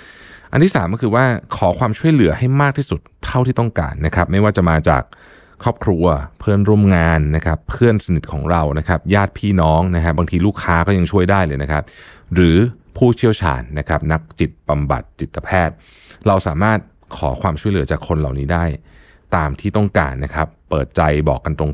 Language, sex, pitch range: Thai, male, 75-100 Hz